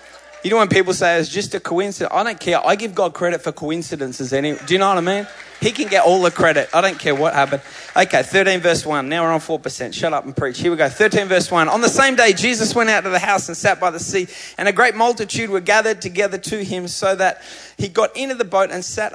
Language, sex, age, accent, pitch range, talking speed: English, male, 20-39, Australian, 150-190 Hz, 275 wpm